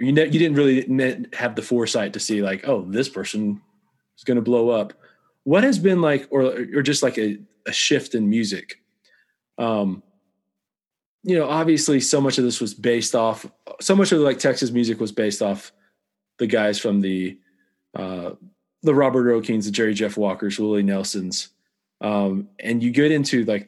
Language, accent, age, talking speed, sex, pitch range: English, American, 20-39, 185 wpm, male, 100-135 Hz